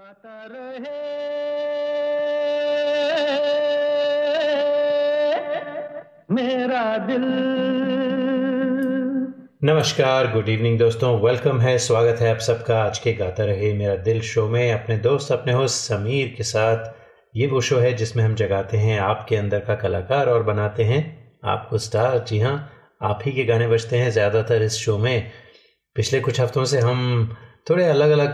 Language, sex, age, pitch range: Hindi, male, 30-49, 110-145 Hz